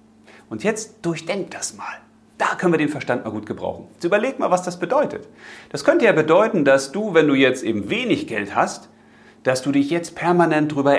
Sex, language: male, German